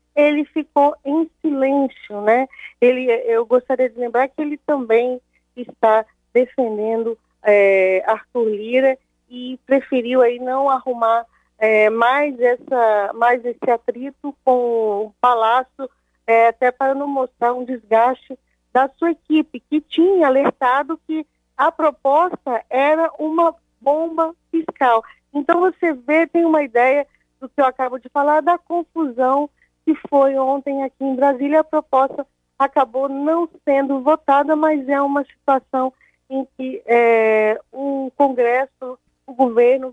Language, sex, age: Portuguese, female, 40-59